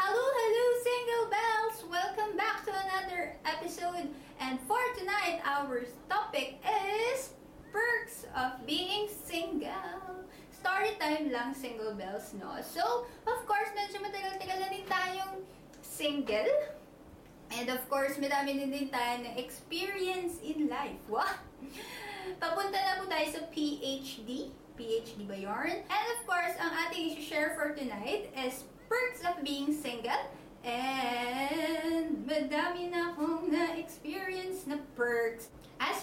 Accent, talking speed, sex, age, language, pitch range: native, 125 wpm, female, 20-39, Filipino, 260-380 Hz